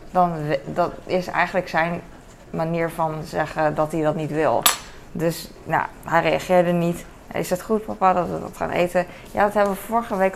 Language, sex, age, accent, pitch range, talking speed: Dutch, female, 20-39, Dutch, 155-180 Hz, 190 wpm